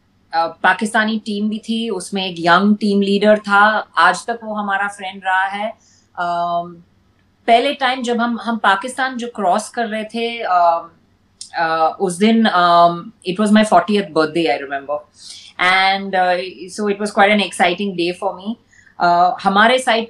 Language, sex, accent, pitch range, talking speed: Hindi, female, native, 175-220 Hz, 160 wpm